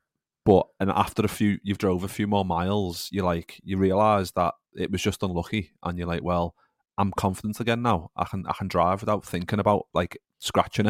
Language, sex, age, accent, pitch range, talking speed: English, male, 30-49, British, 90-100 Hz, 210 wpm